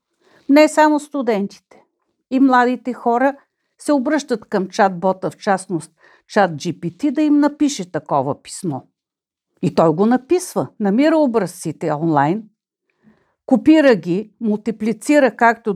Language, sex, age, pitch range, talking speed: Bulgarian, female, 50-69, 190-280 Hz, 115 wpm